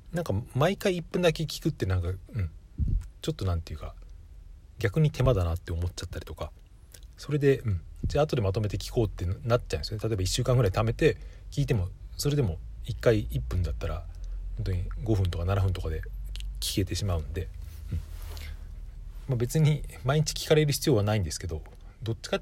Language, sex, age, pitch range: Japanese, male, 40-59, 85-120 Hz